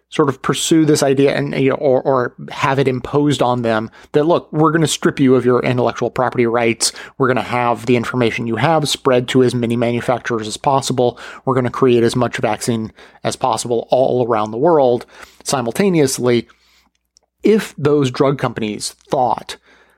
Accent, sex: American, male